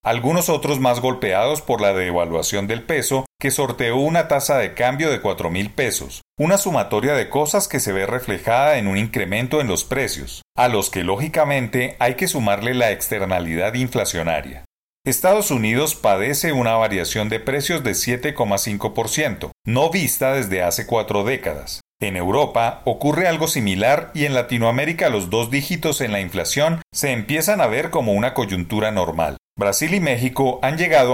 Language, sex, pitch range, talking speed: Spanish, male, 105-145 Hz, 160 wpm